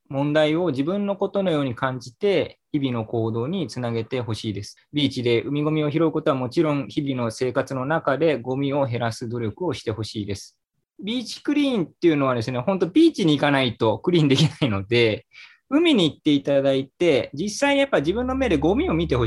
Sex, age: male, 20-39